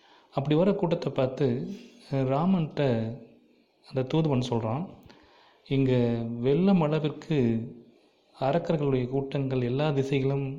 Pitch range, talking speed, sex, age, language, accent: 125-145 Hz, 85 wpm, male, 30-49, Tamil, native